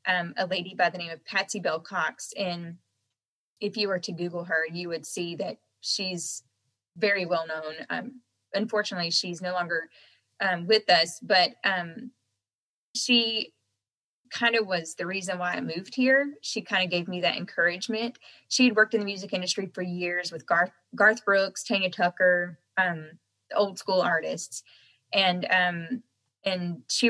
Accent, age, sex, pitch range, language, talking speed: American, 20-39, female, 170-210 Hz, English, 165 wpm